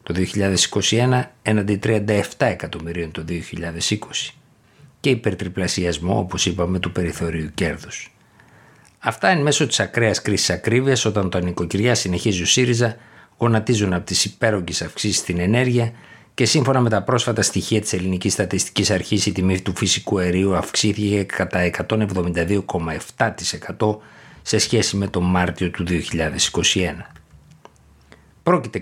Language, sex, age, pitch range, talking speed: Greek, male, 60-79, 90-115 Hz, 125 wpm